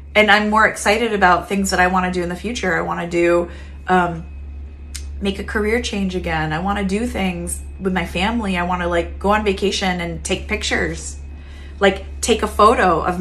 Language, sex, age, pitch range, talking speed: English, female, 30-49, 170-235 Hz, 215 wpm